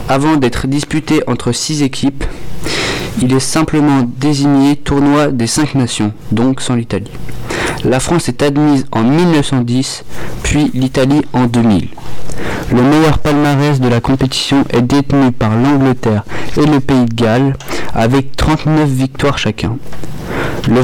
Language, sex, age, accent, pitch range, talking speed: French, male, 40-59, French, 125-150 Hz, 135 wpm